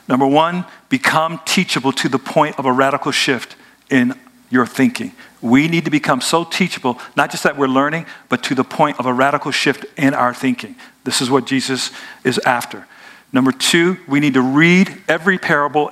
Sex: male